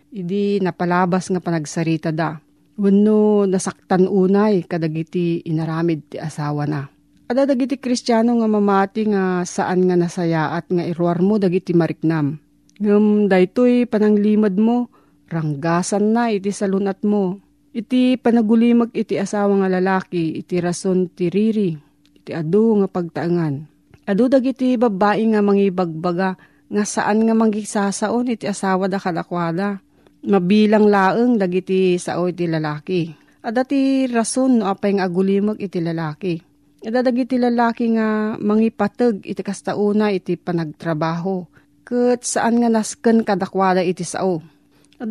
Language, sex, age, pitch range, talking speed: Filipino, female, 40-59, 175-225 Hz, 135 wpm